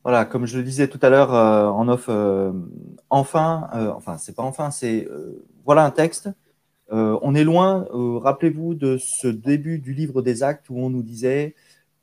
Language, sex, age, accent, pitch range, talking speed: French, male, 30-49, French, 115-155 Hz, 220 wpm